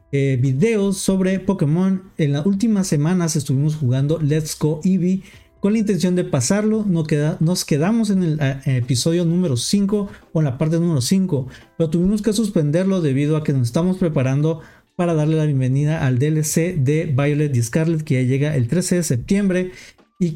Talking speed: 190 wpm